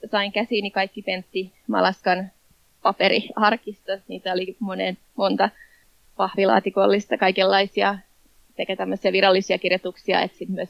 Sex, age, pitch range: female, 20-39, 185-200 Hz